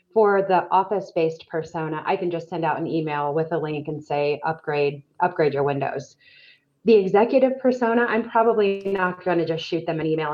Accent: American